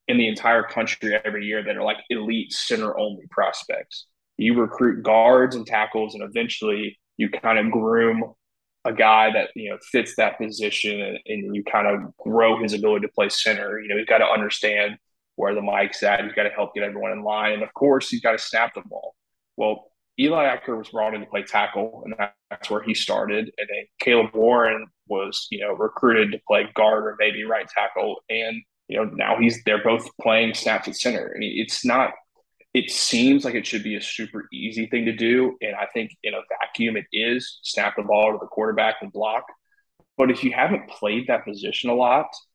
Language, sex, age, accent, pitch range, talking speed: English, male, 20-39, American, 110-115 Hz, 215 wpm